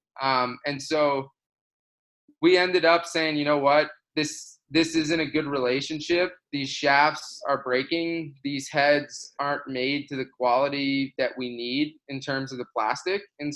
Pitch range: 130-155 Hz